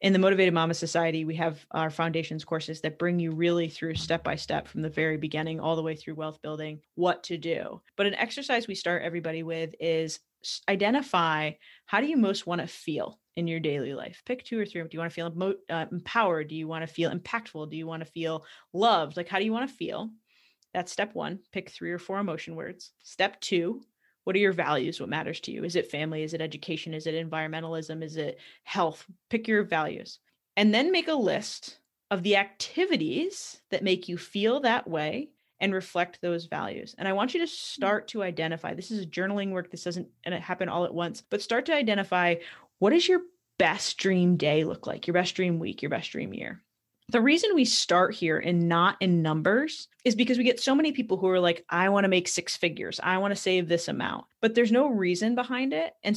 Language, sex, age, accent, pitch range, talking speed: English, female, 20-39, American, 165-220 Hz, 220 wpm